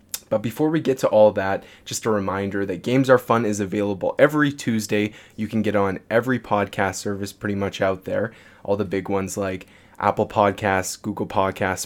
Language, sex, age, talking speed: English, male, 20-39, 190 wpm